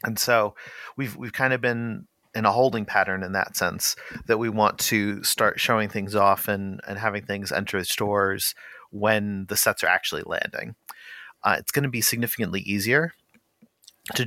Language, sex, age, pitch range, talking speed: English, male, 40-59, 95-110 Hz, 180 wpm